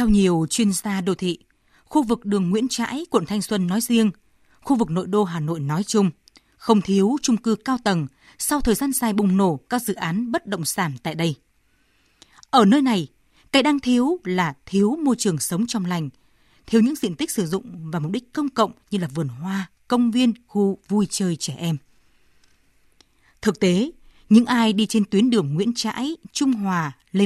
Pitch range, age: 175-230 Hz, 20-39